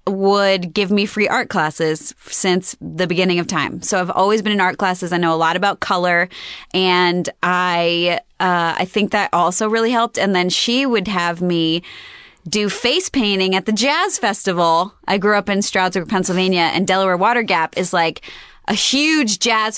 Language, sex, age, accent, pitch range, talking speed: English, female, 20-39, American, 170-215 Hz, 185 wpm